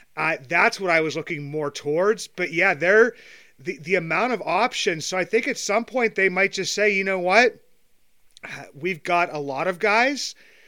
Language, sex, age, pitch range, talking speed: English, male, 30-49, 145-185 Hz, 195 wpm